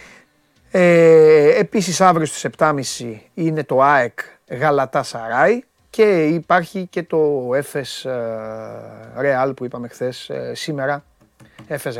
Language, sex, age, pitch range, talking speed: Greek, male, 30-49, 115-175 Hz, 105 wpm